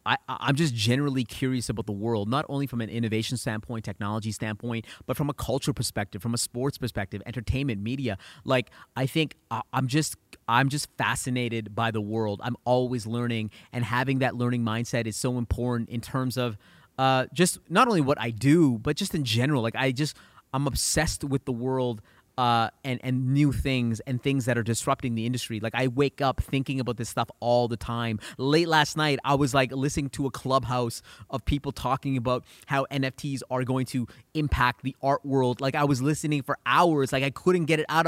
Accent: American